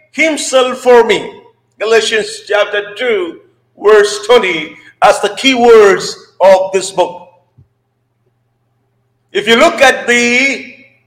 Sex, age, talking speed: male, 50-69, 110 wpm